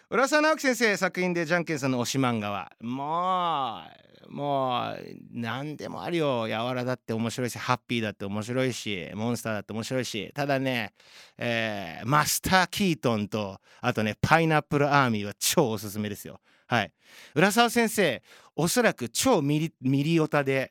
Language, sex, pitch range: Japanese, male, 115-170 Hz